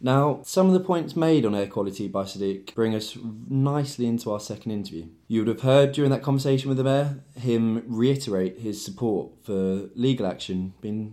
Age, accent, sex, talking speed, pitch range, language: 20-39, British, male, 195 wpm, 95-115 Hz, English